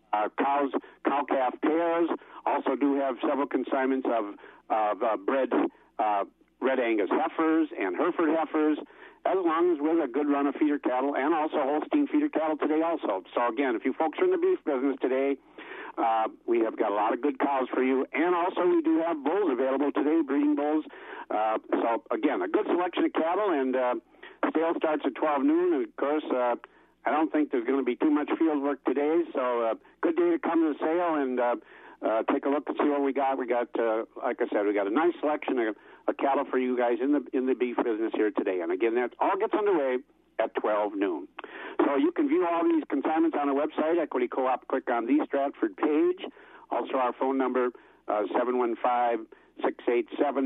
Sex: male